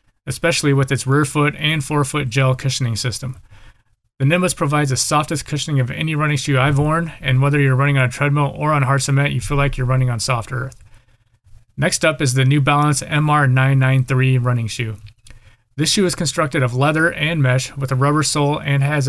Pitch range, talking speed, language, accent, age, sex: 125-145 Hz, 200 wpm, English, American, 30-49, male